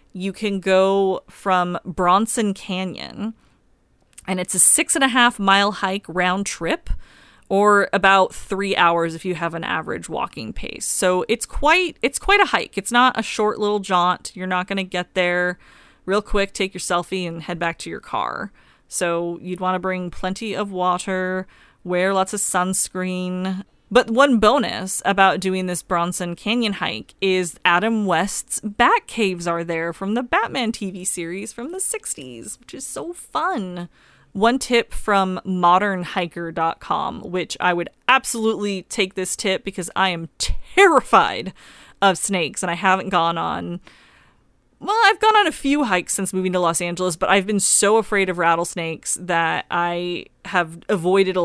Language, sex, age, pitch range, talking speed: English, female, 30-49, 180-210 Hz, 170 wpm